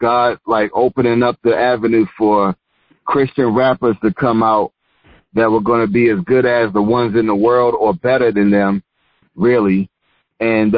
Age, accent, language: 30-49, American, English